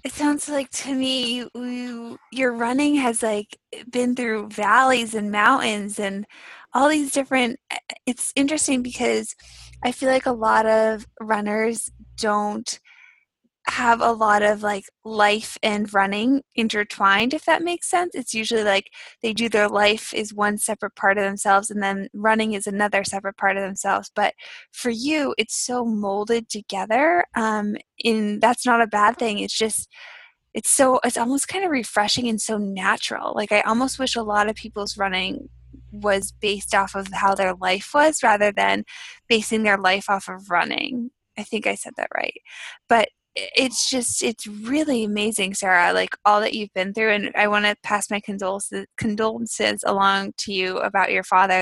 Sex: female